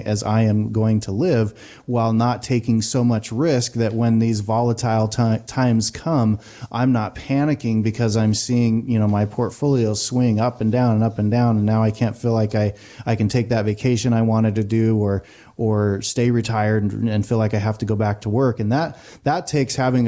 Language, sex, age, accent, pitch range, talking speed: English, male, 30-49, American, 110-125 Hz, 215 wpm